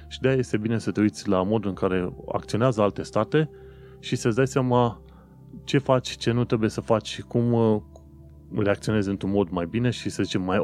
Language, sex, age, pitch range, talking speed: Romanian, male, 30-49, 85-120 Hz, 205 wpm